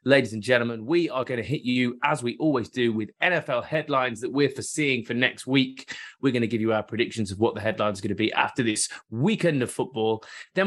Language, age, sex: English, 20-39, male